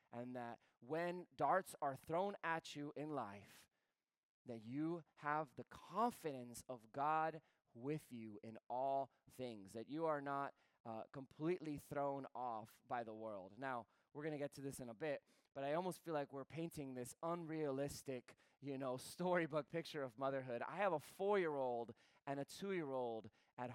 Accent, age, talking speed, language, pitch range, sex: American, 20-39, 165 wpm, English, 130-165 Hz, male